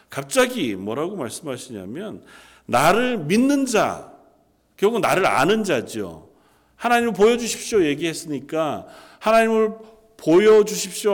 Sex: male